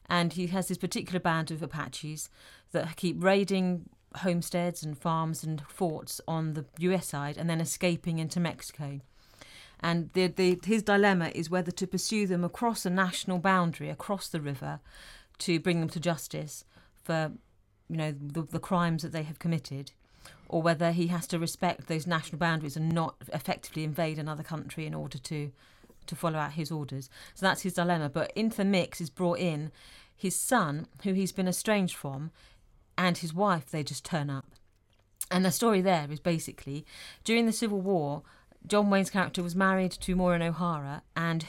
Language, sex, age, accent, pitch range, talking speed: English, female, 40-59, British, 150-180 Hz, 180 wpm